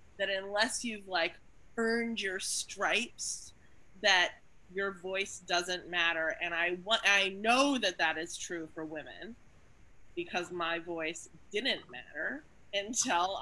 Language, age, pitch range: English, 20-39, 170-210 Hz